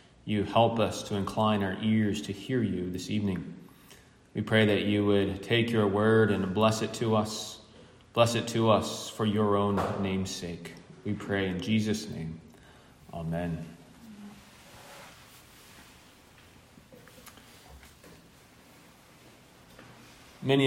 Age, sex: 30-49, male